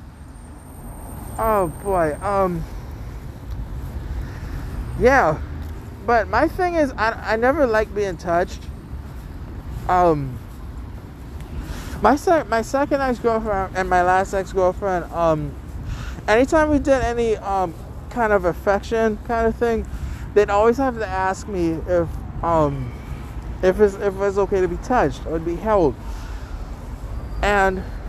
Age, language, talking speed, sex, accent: 20-39, English, 120 wpm, male, American